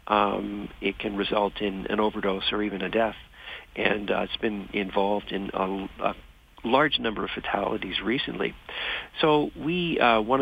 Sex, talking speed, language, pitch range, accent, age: male, 160 wpm, English, 100-125 Hz, American, 50-69